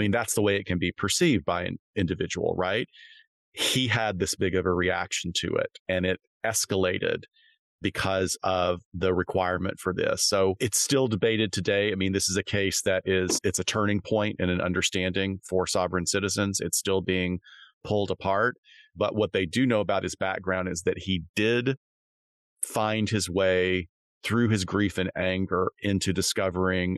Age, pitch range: 40-59, 90-100 Hz